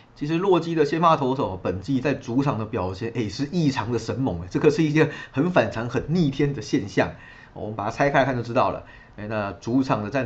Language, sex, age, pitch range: Chinese, male, 30-49, 110-135 Hz